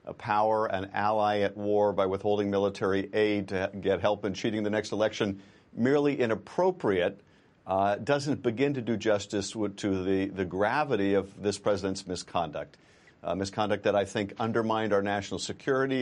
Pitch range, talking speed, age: 100-130 Hz, 165 wpm, 50-69